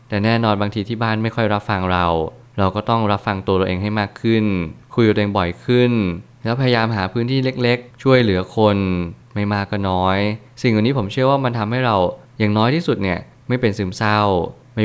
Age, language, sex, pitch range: 20-39, Thai, male, 100-120 Hz